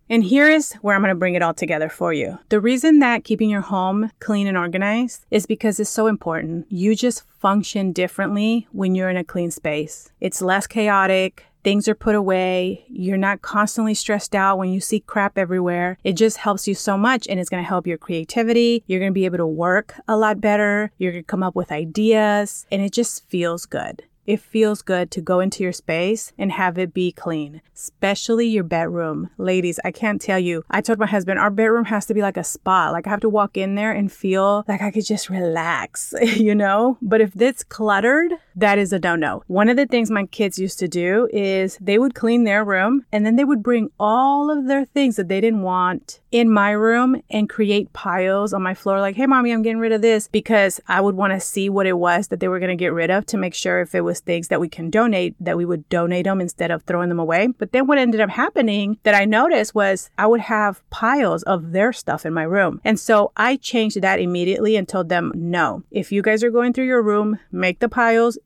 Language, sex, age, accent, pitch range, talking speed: English, female, 30-49, American, 185-220 Hz, 240 wpm